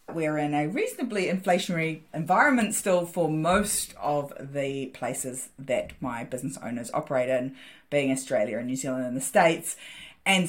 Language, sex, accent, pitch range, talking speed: English, female, Australian, 155-215 Hz, 155 wpm